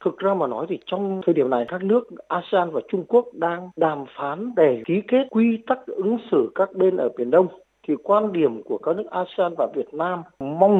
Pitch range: 175-245 Hz